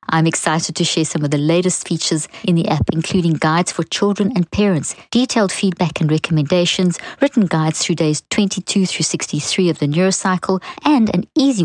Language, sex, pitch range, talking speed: English, female, 160-200 Hz, 180 wpm